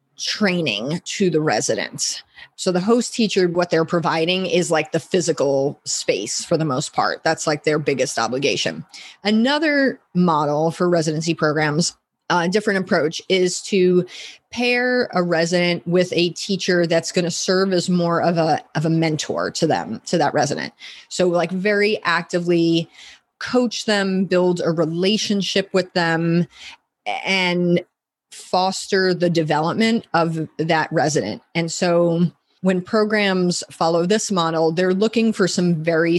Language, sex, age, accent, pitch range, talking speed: English, female, 30-49, American, 165-195 Hz, 145 wpm